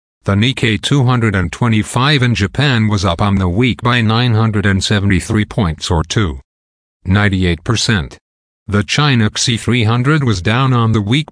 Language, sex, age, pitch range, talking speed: English, male, 50-69, 100-120 Hz, 120 wpm